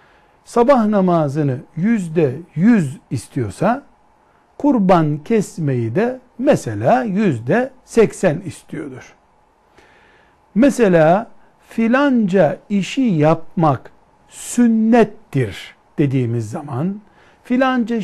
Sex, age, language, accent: male, 60-79, Turkish, native